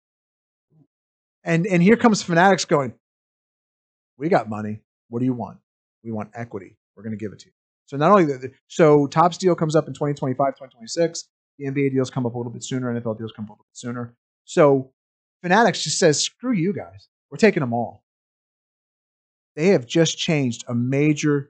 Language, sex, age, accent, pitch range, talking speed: English, male, 30-49, American, 130-180 Hz, 195 wpm